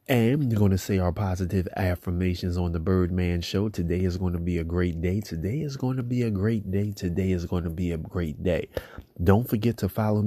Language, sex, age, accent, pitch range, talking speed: English, male, 30-49, American, 95-110 Hz, 235 wpm